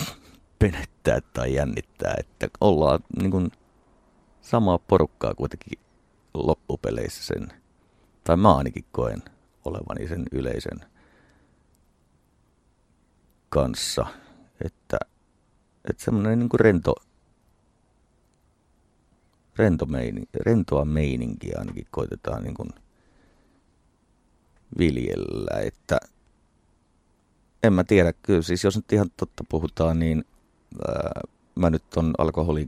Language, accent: English, Finnish